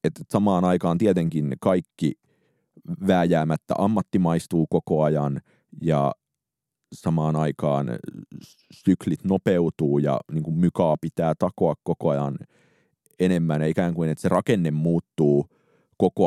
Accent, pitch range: native, 80-95 Hz